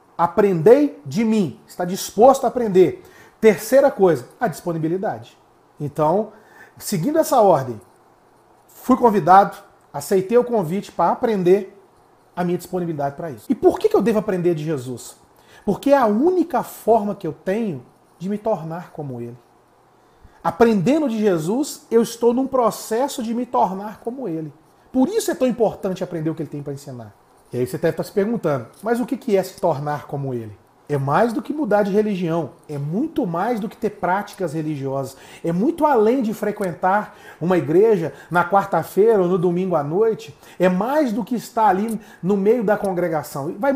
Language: Portuguese